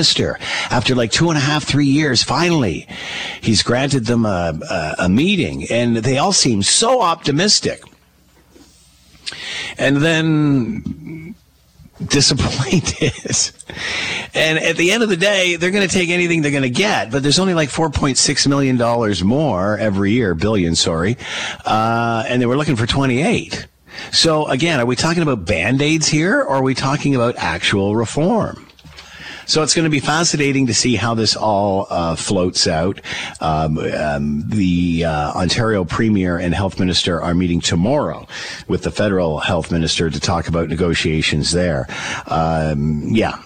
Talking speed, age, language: 160 wpm, 50-69, English